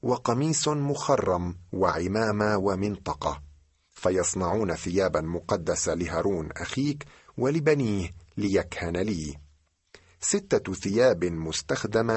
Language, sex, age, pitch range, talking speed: Arabic, male, 50-69, 85-115 Hz, 75 wpm